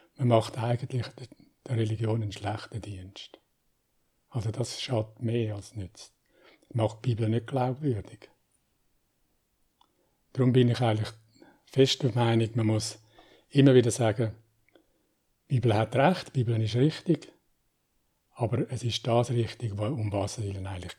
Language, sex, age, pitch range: German, male, 60-79, 105-125 Hz